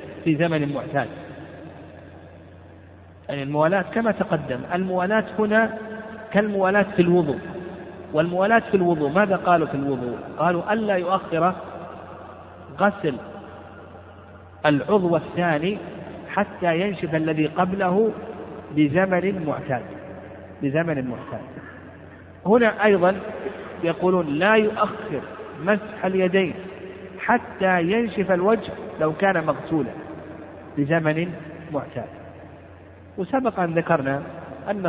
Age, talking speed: 50-69, 90 wpm